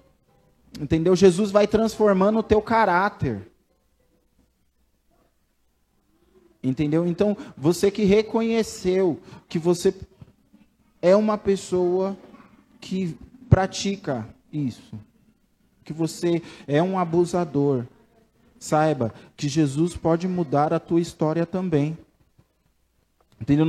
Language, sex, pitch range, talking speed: Portuguese, male, 155-195 Hz, 90 wpm